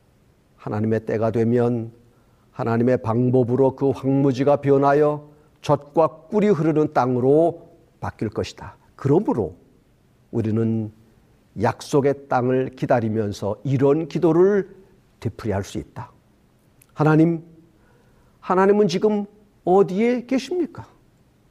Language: Korean